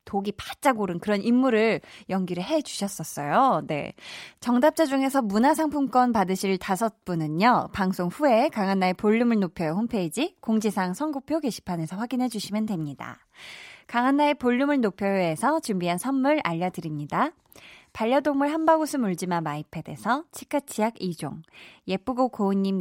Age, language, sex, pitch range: 20-39, Korean, female, 175-260 Hz